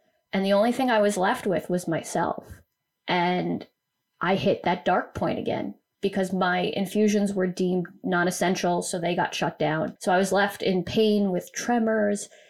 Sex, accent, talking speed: female, American, 175 wpm